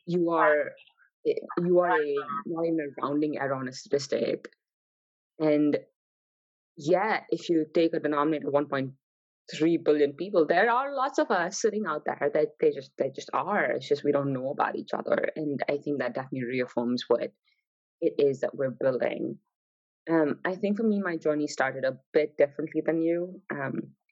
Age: 20-39